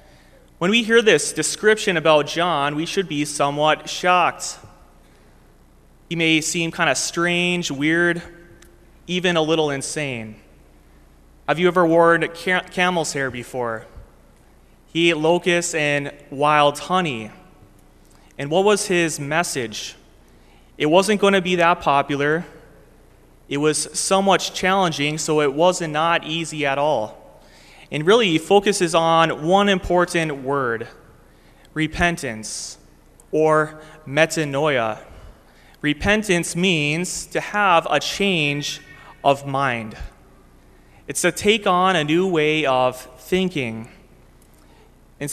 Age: 30-49